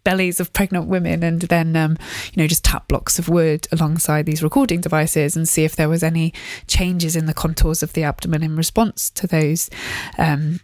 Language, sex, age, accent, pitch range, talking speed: English, female, 20-39, British, 160-175 Hz, 205 wpm